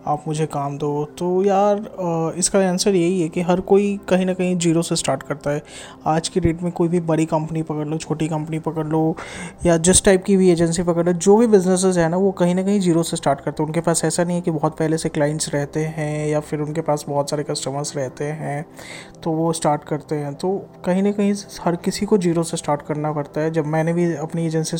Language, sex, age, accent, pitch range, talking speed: Hindi, male, 20-39, native, 150-180 Hz, 245 wpm